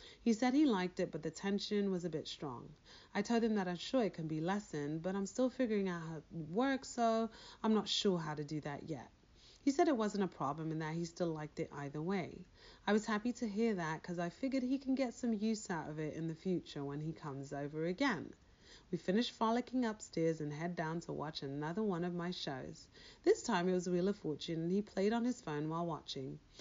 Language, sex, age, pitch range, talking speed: English, female, 30-49, 160-230 Hz, 240 wpm